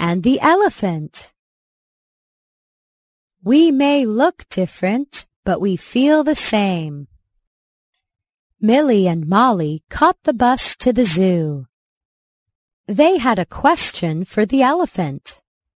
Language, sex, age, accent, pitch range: Chinese, female, 30-49, American, 175-280 Hz